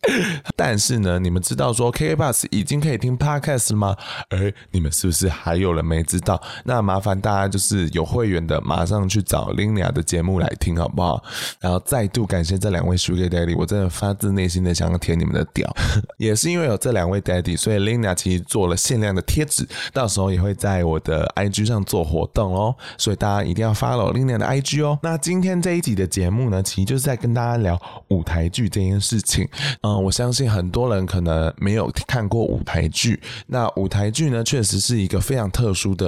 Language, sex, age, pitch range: Chinese, male, 20-39, 90-120 Hz